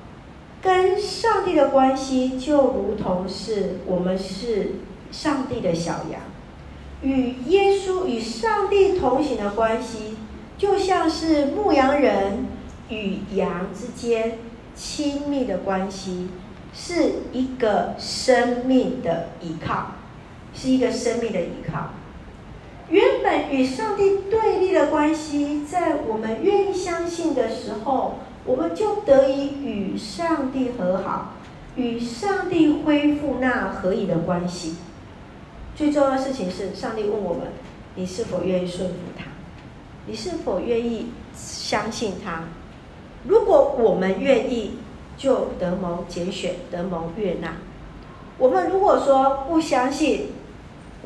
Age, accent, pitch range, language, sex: 40-59, American, 195-300 Hz, Chinese, female